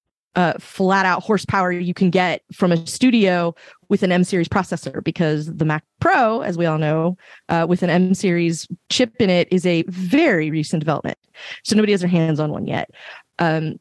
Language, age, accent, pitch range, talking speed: English, 20-39, American, 170-195 Hz, 185 wpm